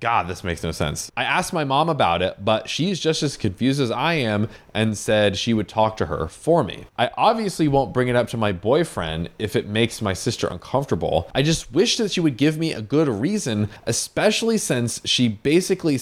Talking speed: 215 wpm